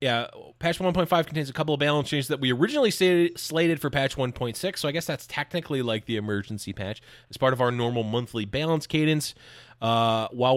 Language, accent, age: English, American, 20-39